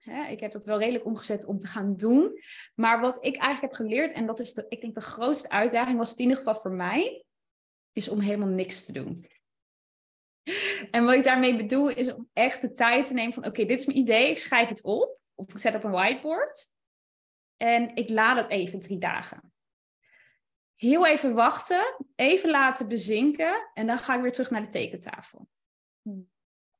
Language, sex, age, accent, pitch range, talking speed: Dutch, female, 20-39, Dutch, 205-255 Hz, 205 wpm